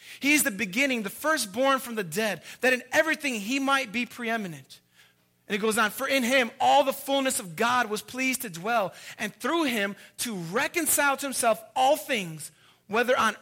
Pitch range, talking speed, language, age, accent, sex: 175-255 Hz, 190 wpm, English, 30-49, American, male